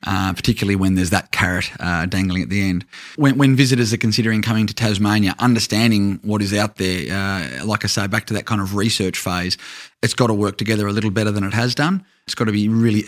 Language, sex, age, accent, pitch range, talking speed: English, male, 30-49, Australian, 95-115 Hz, 240 wpm